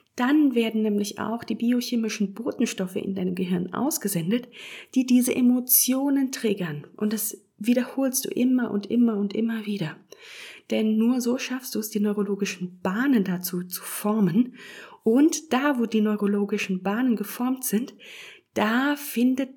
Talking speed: 145 wpm